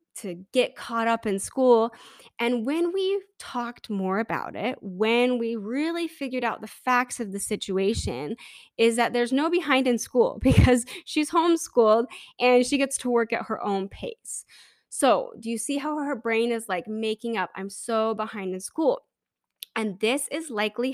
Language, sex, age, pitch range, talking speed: English, female, 10-29, 205-250 Hz, 180 wpm